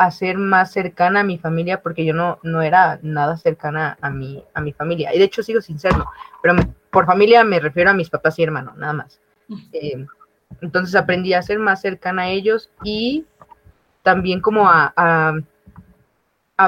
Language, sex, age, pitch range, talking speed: Spanish, female, 20-39, 165-195 Hz, 185 wpm